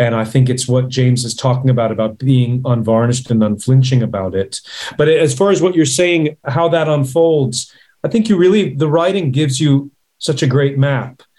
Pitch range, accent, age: 115-135 Hz, American, 40-59